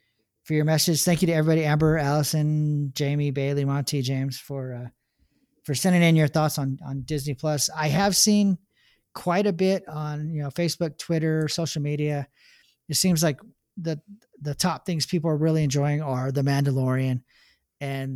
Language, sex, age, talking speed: English, male, 40-59, 170 wpm